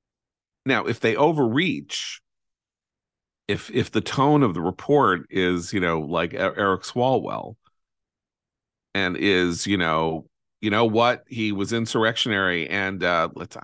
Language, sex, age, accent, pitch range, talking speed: English, male, 40-59, American, 85-110 Hz, 130 wpm